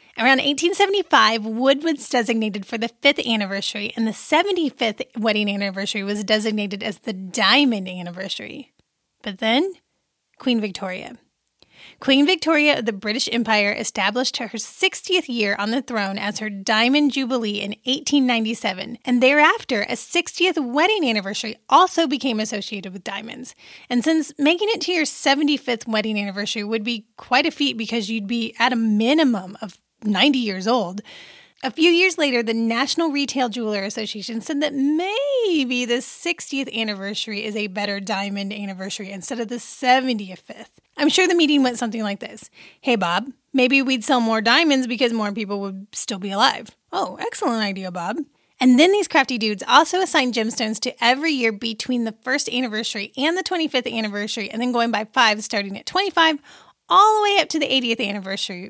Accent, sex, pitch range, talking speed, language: American, female, 215-280 Hz, 165 wpm, English